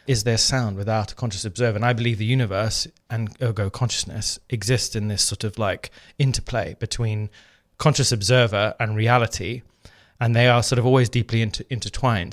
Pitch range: 105-125 Hz